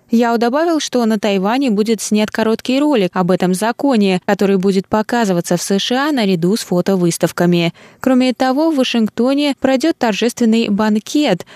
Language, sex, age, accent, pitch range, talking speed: Russian, female, 20-39, native, 190-240 Hz, 140 wpm